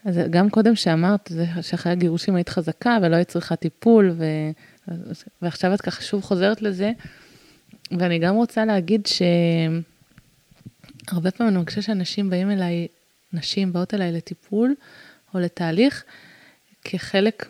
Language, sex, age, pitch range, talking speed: Hebrew, female, 20-39, 175-225 Hz, 130 wpm